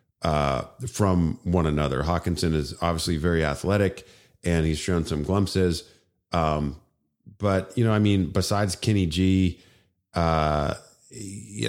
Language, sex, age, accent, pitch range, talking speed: English, male, 40-59, American, 80-95 Hz, 130 wpm